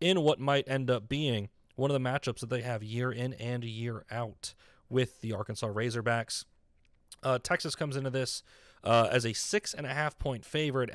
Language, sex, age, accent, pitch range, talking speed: English, male, 30-49, American, 115-145 Hz, 175 wpm